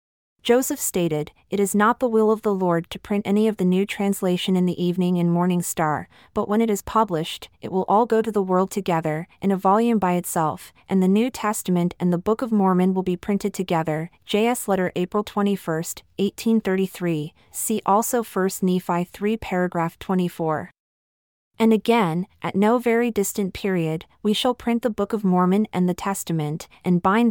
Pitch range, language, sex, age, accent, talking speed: 175-210 Hz, English, female, 30-49, American, 185 wpm